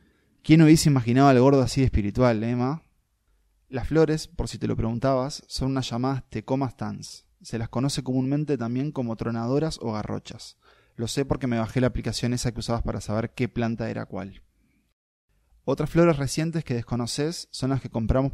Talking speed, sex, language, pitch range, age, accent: 180 wpm, male, Spanish, 110-135 Hz, 20-39, Argentinian